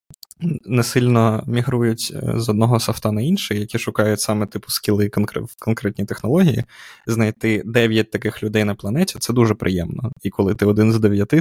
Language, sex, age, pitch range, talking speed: Ukrainian, male, 20-39, 105-125 Hz, 165 wpm